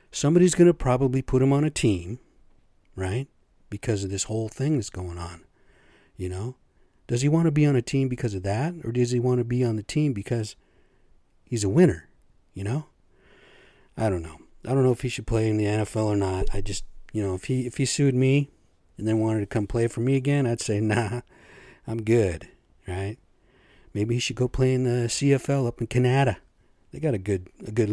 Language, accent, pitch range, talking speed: English, American, 105-130 Hz, 220 wpm